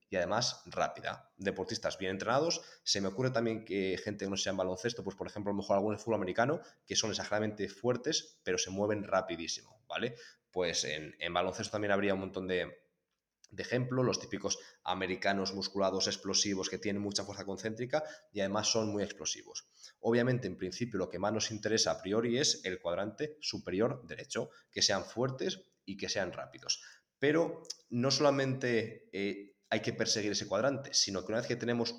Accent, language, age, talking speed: Spanish, Spanish, 20-39, 185 wpm